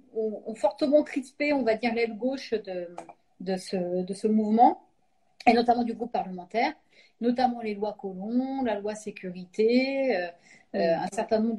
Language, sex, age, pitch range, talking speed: French, female, 40-59, 195-240 Hz, 155 wpm